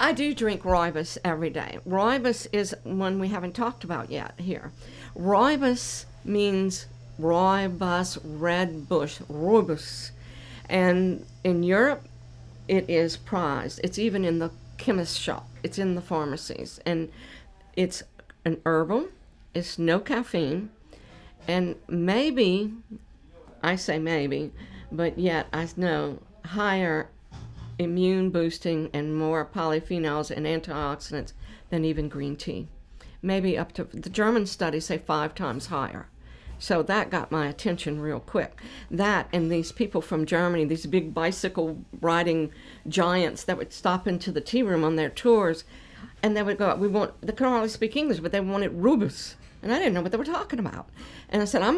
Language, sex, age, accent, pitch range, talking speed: English, female, 50-69, American, 155-200 Hz, 155 wpm